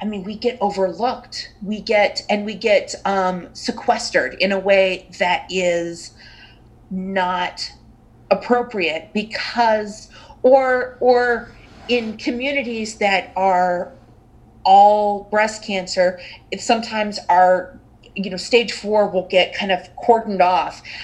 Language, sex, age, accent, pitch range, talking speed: English, female, 40-59, American, 185-235 Hz, 120 wpm